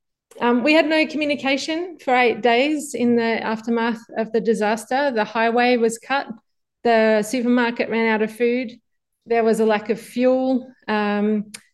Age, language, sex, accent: 30-49, English, female, Australian